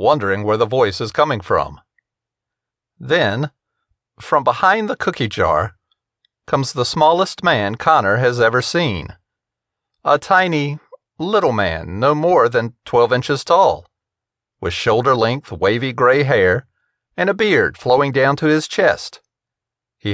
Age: 40-59